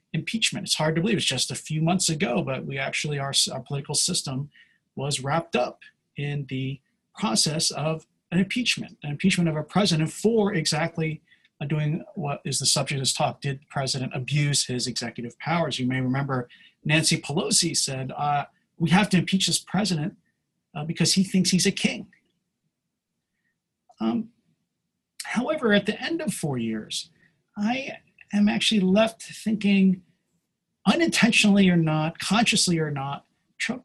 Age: 40-59